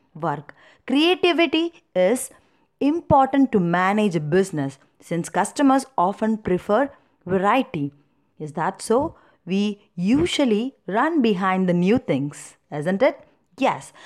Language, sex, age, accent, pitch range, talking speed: Tamil, female, 30-49, native, 175-260 Hz, 110 wpm